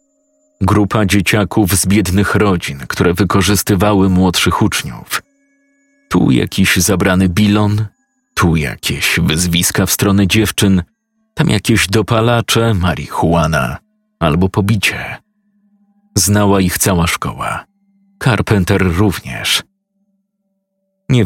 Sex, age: male, 40-59